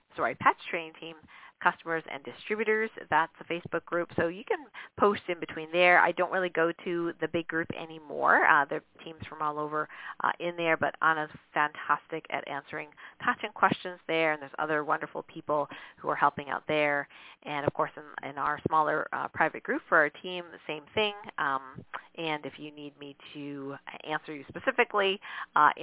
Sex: female